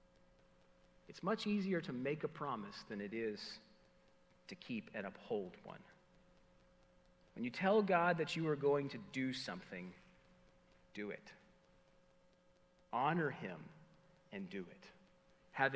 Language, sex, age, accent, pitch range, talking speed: English, male, 40-59, American, 125-180 Hz, 130 wpm